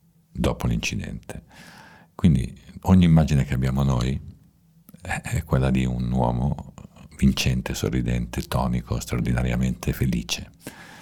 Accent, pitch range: native, 70-85 Hz